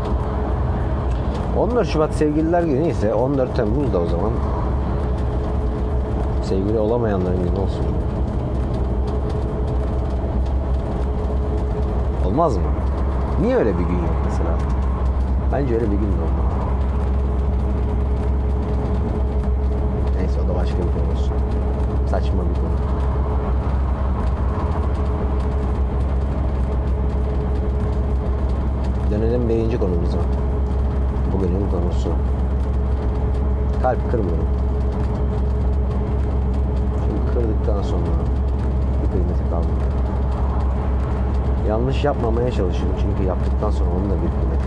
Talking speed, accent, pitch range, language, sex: 75 wpm, native, 65-70 Hz, Turkish, male